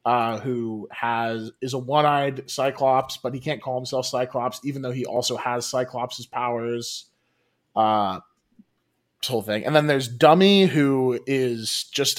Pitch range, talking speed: 120-145 Hz, 160 wpm